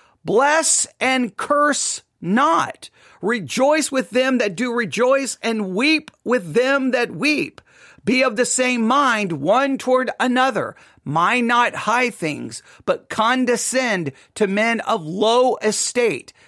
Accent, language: American, English